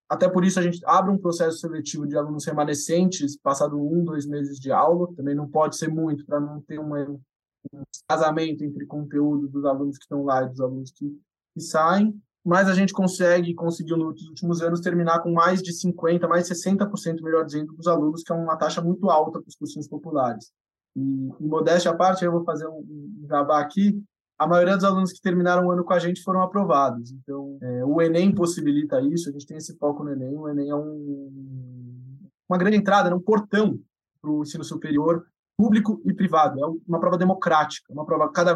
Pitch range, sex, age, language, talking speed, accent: 150-180 Hz, male, 20-39, Portuguese, 205 wpm, Brazilian